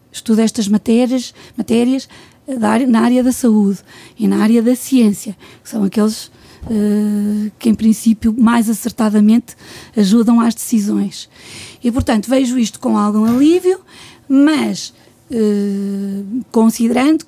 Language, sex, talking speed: Portuguese, female, 130 wpm